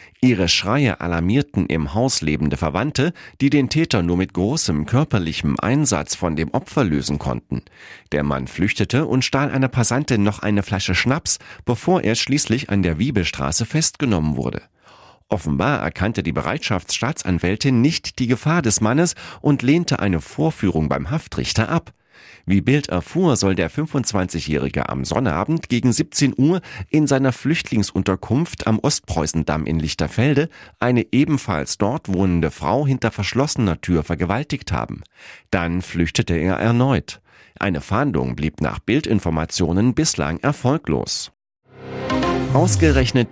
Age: 40-59